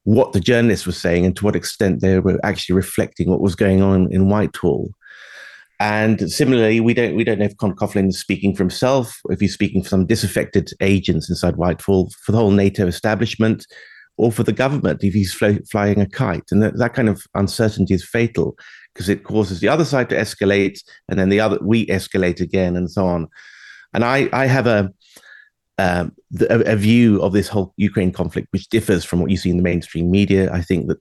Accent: British